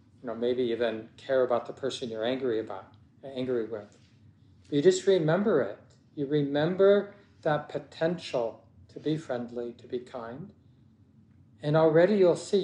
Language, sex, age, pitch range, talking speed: English, male, 50-69, 120-150 Hz, 140 wpm